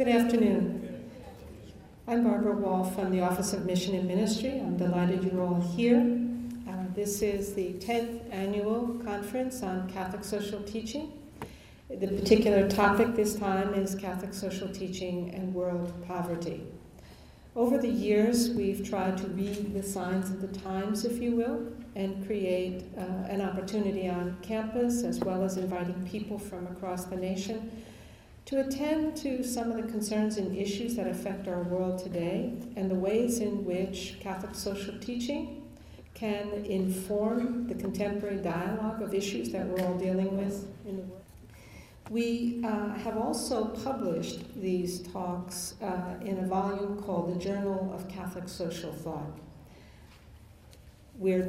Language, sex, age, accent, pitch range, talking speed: English, female, 60-79, American, 185-220 Hz, 145 wpm